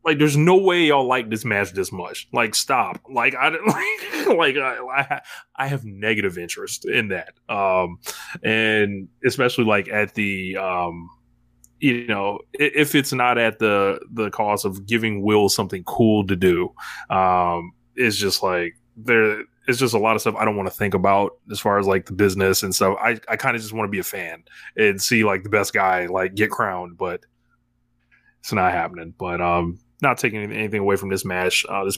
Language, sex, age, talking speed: English, male, 20-39, 200 wpm